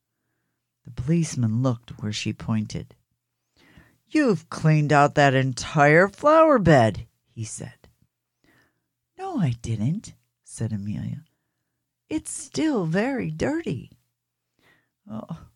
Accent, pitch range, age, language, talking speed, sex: American, 120-165 Hz, 60-79, English, 95 wpm, female